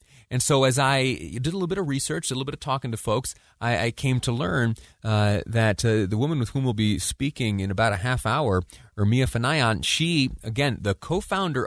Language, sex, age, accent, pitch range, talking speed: English, male, 30-49, American, 95-125 Hz, 220 wpm